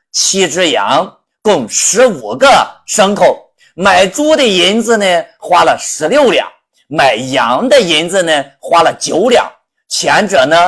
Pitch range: 185-295 Hz